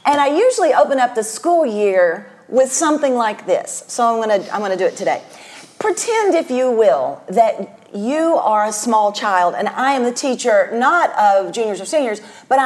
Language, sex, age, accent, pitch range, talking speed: English, female, 40-59, American, 230-320 Hz, 205 wpm